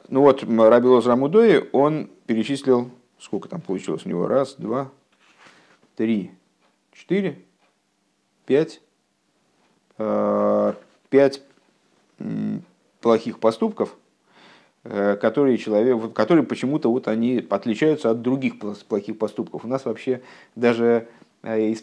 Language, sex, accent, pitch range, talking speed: Russian, male, native, 110-135 Hz, 100 wpm